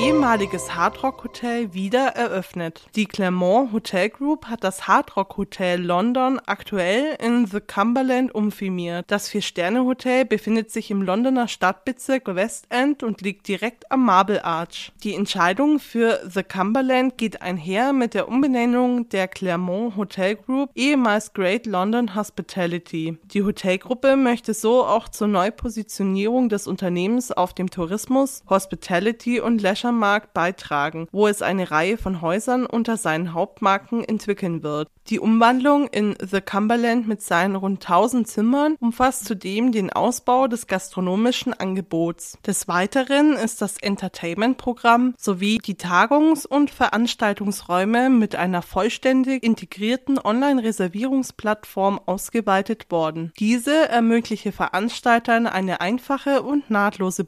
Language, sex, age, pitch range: German, female, 20-39, 185-240 Hz